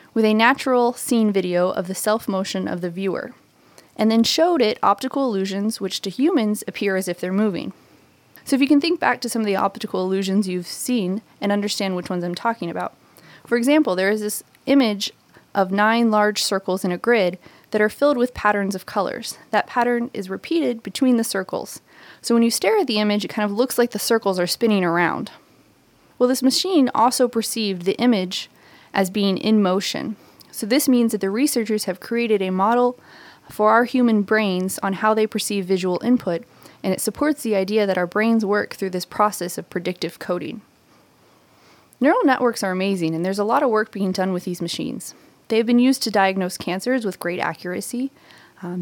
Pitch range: 195-240 Hz